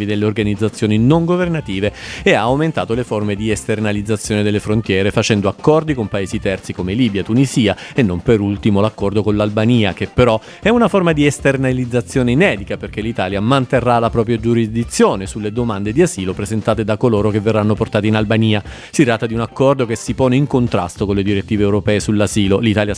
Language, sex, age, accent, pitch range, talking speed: Italian, male, 40-59, native, 105-125 Hz, 185 wpm